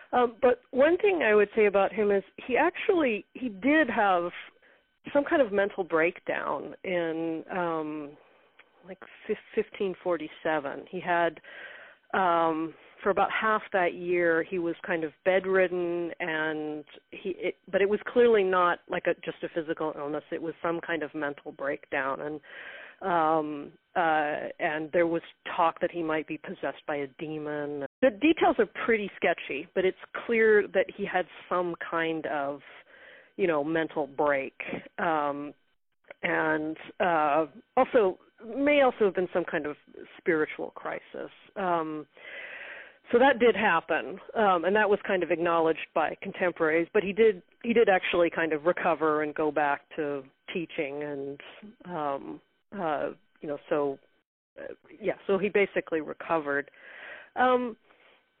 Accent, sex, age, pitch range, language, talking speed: American, female, 40-59, 155-210 Hz, English, 150 wpm